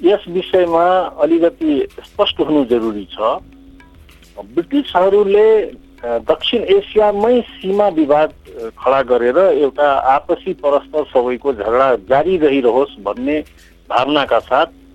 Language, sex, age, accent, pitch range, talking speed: English, male, 60-79, Indian, 125-195 Hz, 105 wpm